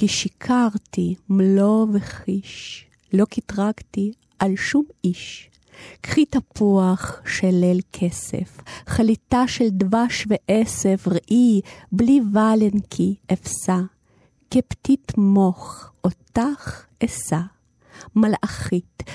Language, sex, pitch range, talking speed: Hebrew, female, 190-225 Hz, 85 wpm